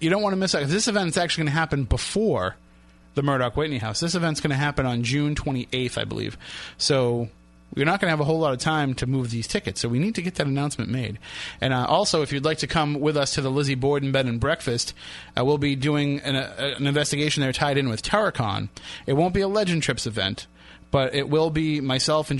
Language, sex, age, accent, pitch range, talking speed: English, male, 30-49, American, 125-150 Hz, 250 wpm